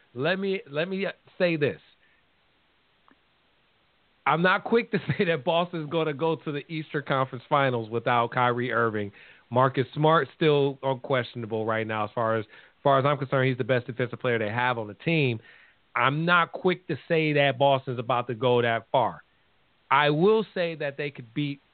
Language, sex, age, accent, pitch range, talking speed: English, male, 40-59, American, 130-165 Hz, 190 wpm